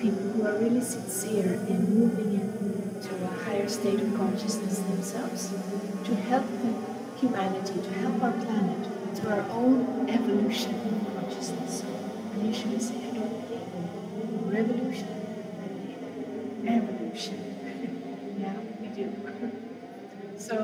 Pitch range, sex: 200-230 Hz, female